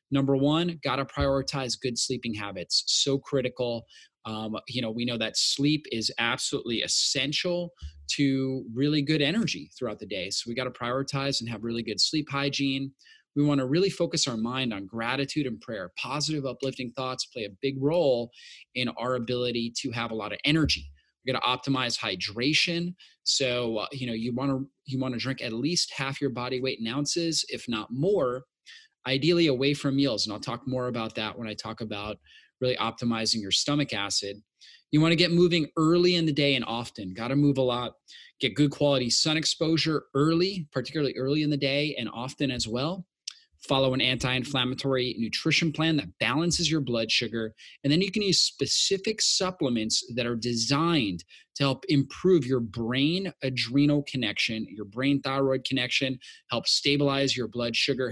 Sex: male